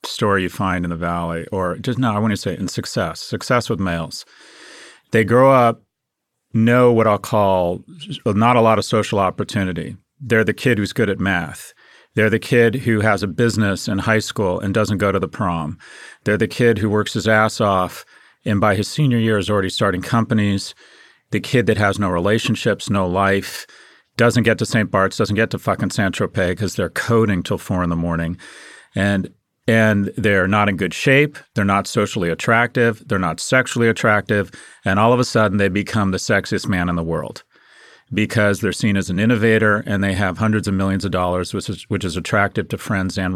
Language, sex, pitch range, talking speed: English, male, 95-115 Hz, 200 wpm